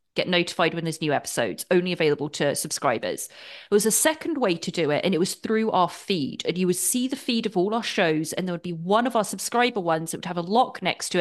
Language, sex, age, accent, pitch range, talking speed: English, female, 30-49, British, 175-230 Hz, 260 wpm